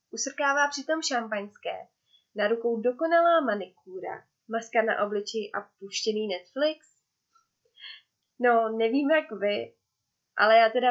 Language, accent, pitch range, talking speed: Czech, native, 210-275 Hz, 110 wpm